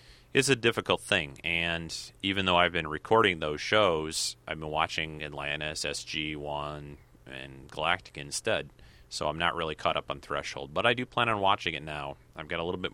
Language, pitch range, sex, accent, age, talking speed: English, 70-85 Hz, male, American, 30-49, 195 wpm